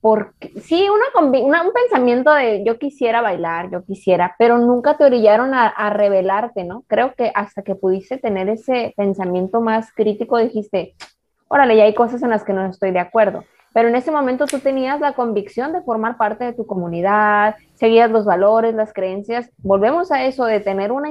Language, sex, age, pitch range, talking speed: Spanish, female, 20-39, 200-245 Hz, 180 wpm